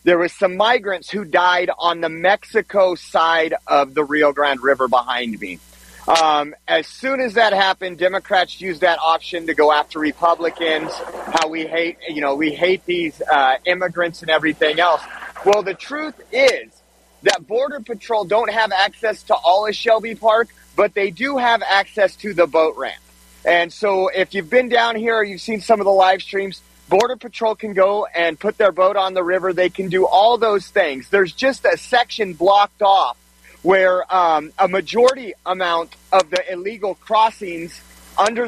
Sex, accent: male, American